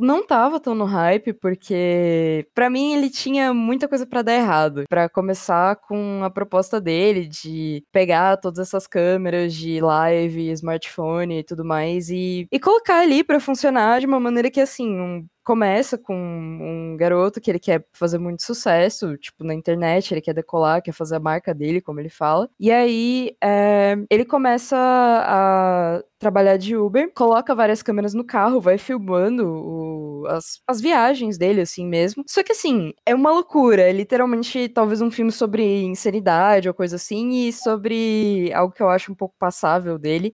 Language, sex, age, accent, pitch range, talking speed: Portuguese, female, 20-39, Brazilian, 175-235 Hz, 175 wpm